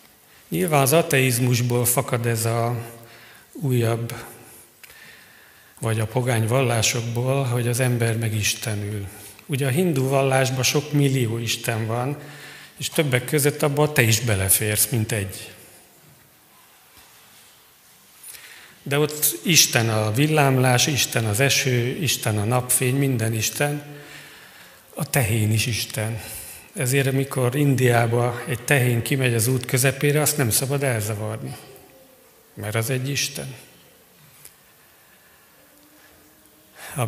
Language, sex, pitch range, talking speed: Hungarian, male, 115-140 Hz, 110 wpm